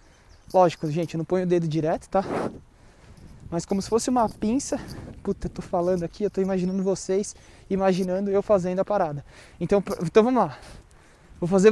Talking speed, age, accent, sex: 180 wpm, 20-39, Brazilian, male